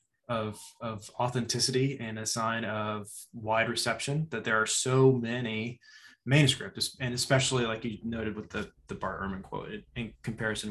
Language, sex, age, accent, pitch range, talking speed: English, male, 20-39, American, 110-130 Hz, 155 wpm